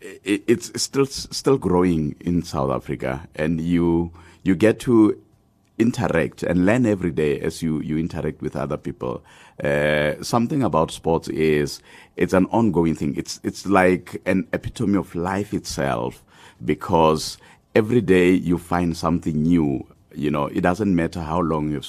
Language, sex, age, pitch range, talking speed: English, male, 50-69, 75-90 Hz, 155 wpm